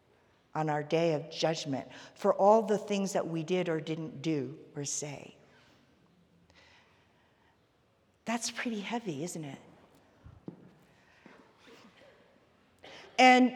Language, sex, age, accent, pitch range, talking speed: English, female, 50-69, American, 160-225 Hz, 100 wpm